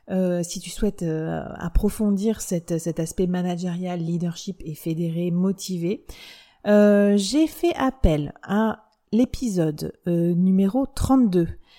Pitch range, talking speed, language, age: 175-235 Hz, 115 wpm, French, 30-49